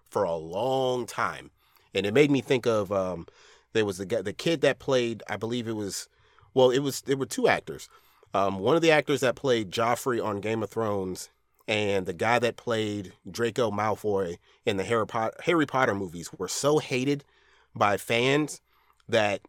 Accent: American